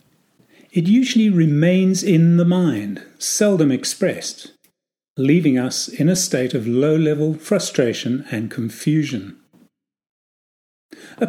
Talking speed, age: 100 wpm, 40-59